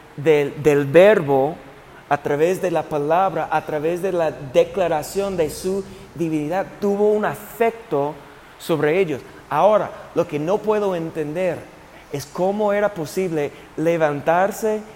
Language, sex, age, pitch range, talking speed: Spanish, male, 40-59, 150-200 Hz, 130 wpm